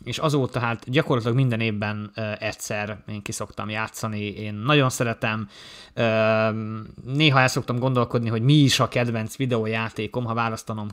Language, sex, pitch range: Hungarian, male, 110-125 Hz